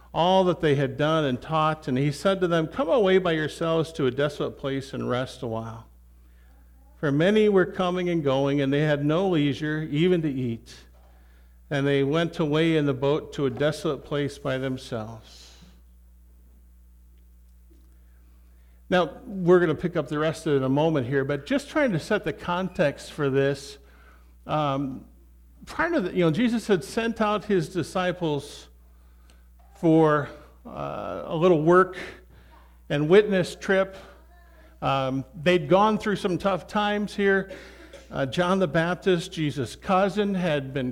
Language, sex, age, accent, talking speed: English, male, 50-69, American, 160 wpm